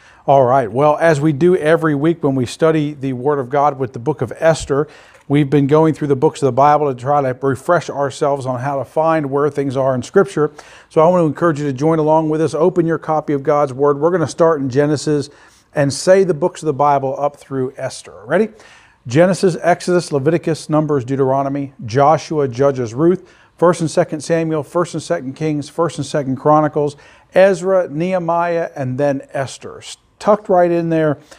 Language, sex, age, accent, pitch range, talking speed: English, male, 50-69, American, 140-165 Hz, 205 wpm